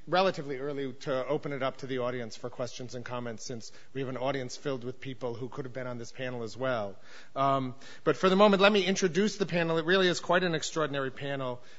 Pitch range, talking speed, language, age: 135-165 Hz, 240 wpm, English, 40-59